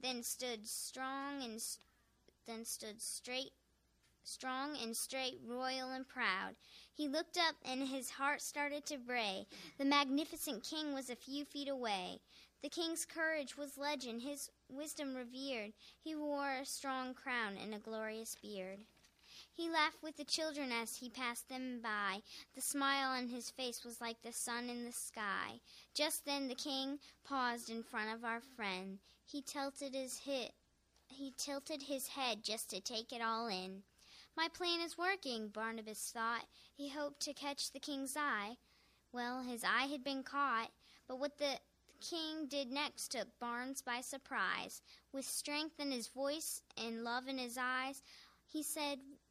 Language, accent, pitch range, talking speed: English, American, 235-285 Hz, 165 wpm